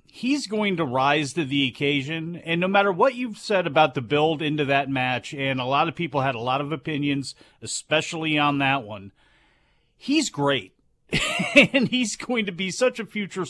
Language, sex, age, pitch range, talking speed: English, male, 40-59, 140-175 Hz, 190 wpm